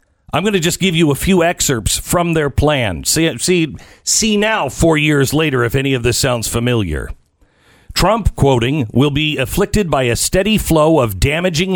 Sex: male